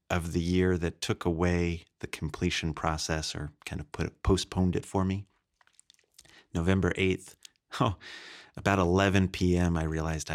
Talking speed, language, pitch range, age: 150 wpm, English, 80-95 Hz, 30-49